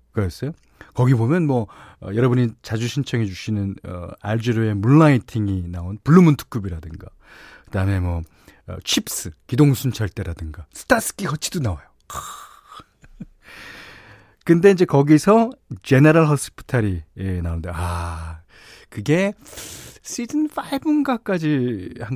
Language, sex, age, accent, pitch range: Korean, male, 40-59, native, 95-145 Hz